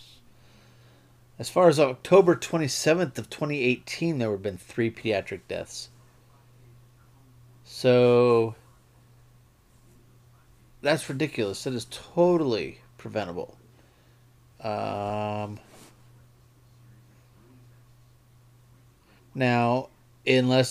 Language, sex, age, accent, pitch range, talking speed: English, male, 30-49, American, 115-125 Hz, 65 wpm